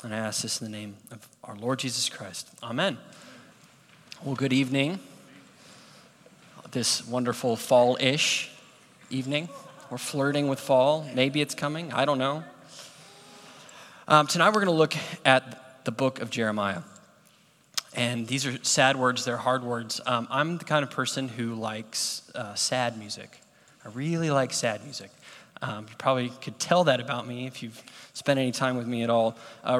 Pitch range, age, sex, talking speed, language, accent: 120-140 Hz, 20-39, male, 170 wpm, English, American